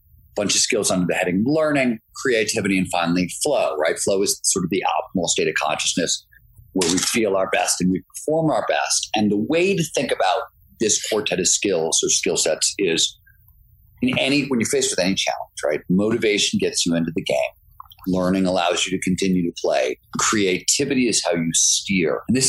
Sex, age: male, 40-59